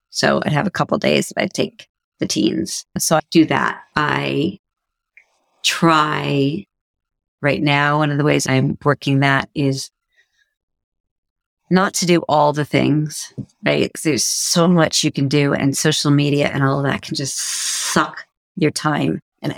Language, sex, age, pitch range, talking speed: English, female, 40-59, 150-210 Hz, 165 wpm